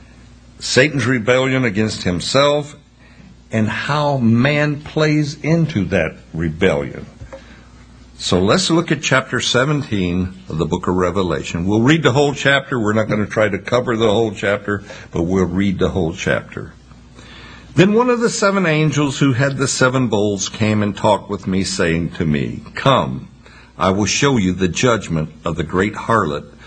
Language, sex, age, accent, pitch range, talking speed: English, male, 60-79, American, 95-140 Hz, 165 wpm